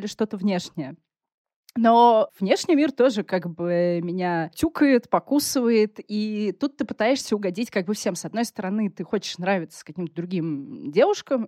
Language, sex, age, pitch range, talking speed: Russian, female, 20-39, 170-225 Hz, 150 wpm